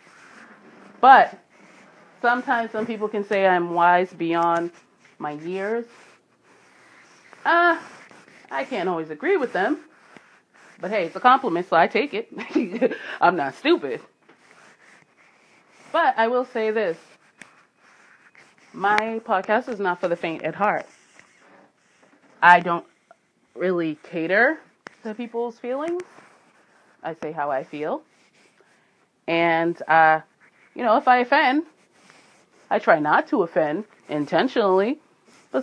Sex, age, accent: female, 30-49, American